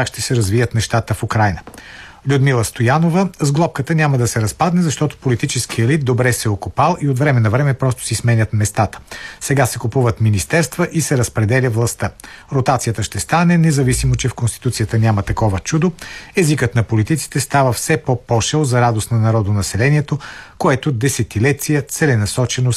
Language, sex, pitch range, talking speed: Bulgarian, male, 115-150 Hz, 165 wpm